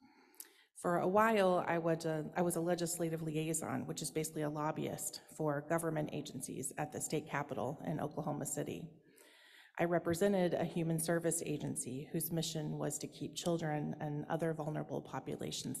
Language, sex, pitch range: English, female, 155-200 Hz